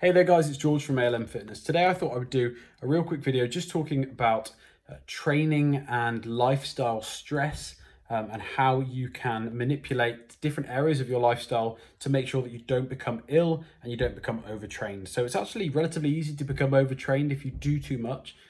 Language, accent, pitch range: English, British, 120-150 Hz